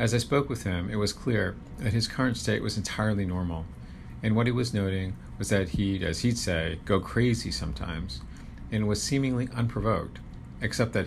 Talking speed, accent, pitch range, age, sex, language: 190 wpm, American, 90-110 Hz, 40-59, male, English